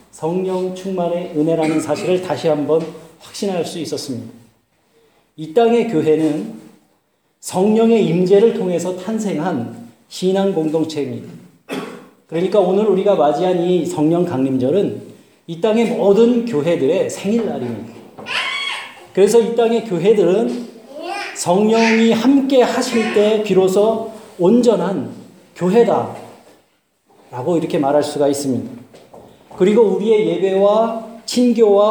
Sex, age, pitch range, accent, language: male, 40-59, 155-225 Hz, native, Korean